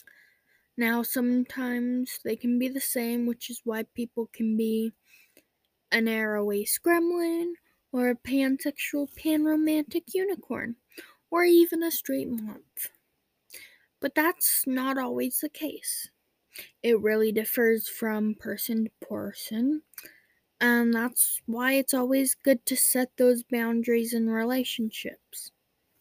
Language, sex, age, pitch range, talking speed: English, female, 10-29, 220-275 Hz, 120 wpm